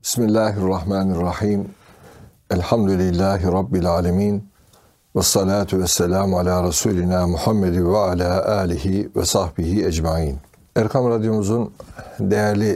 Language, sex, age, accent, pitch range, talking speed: Turkish, male, 60-79, native, 95-115 Hz, 85 wpm